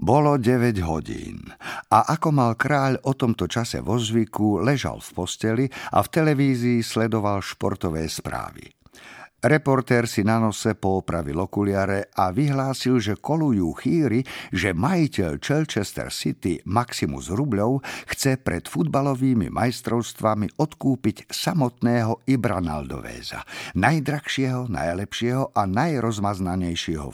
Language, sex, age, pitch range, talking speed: Slovak, male, 50-69, 95-130 Hz, 110 wpm